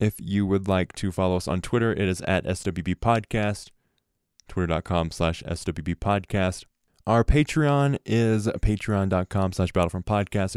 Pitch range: 90-110 Hz